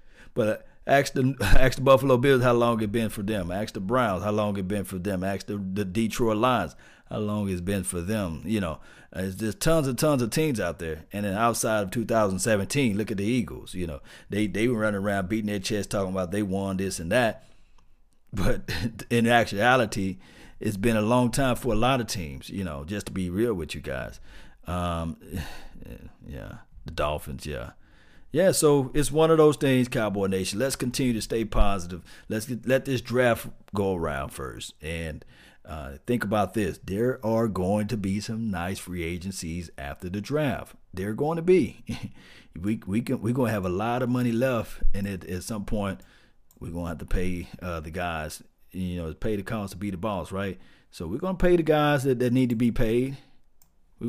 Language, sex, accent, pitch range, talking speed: English, male, American, 95-120 Hz, 210 wpm